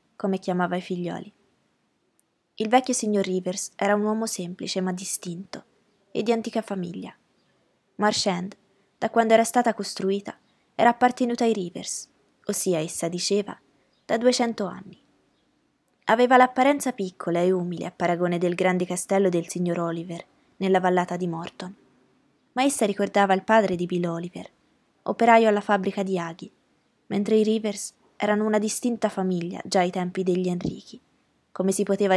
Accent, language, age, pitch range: native, Italian, 20-39, 180-220 Hz